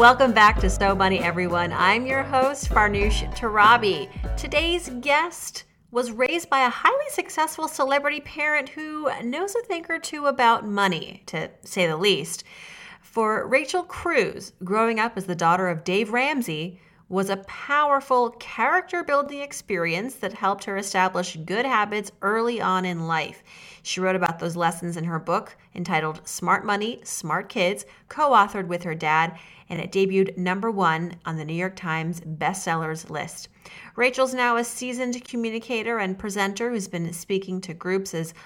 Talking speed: 160 wpm